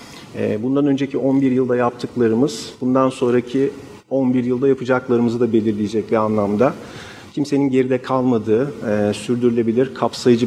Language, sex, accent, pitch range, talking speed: Turkish, male, native, 115-135 Hz, 115 wpm